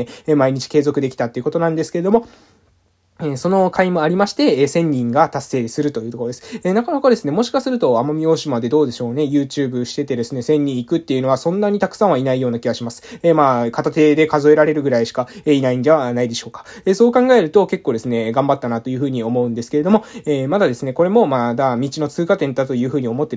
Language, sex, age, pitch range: Japanese, male, 20-39, 125-175 Hz